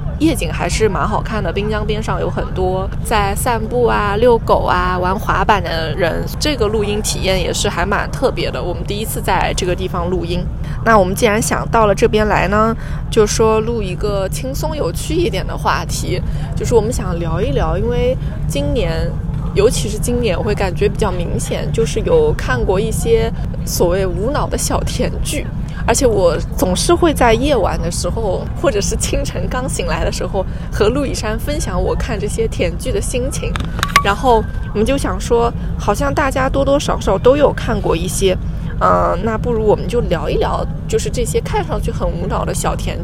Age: 20-39